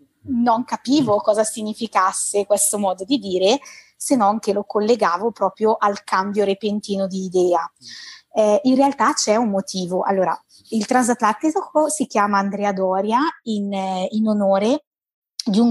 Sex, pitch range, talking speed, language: female, 185-230 Hz, 145 wpm, Italian